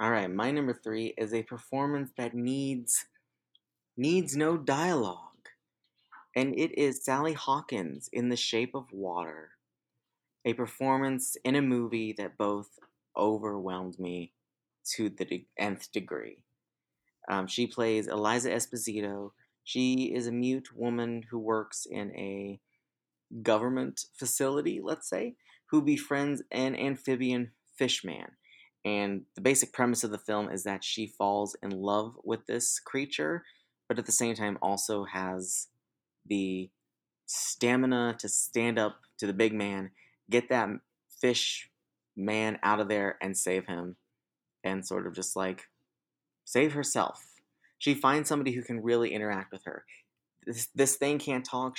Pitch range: 100-130 Hz